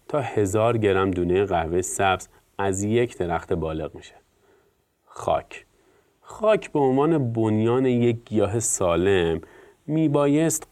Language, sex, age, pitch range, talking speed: Persian, male, 30-49, 95-120 Hz, 120 wpm